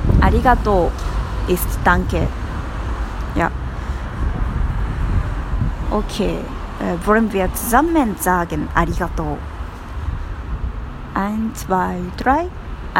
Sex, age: female, 20-39